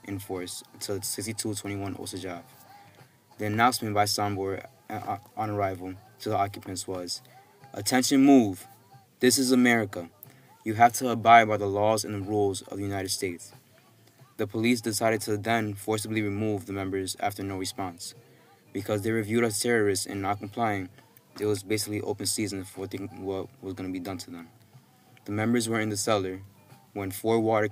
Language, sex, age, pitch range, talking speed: English, male, 20-39, 100-115 Hz, 165 wpm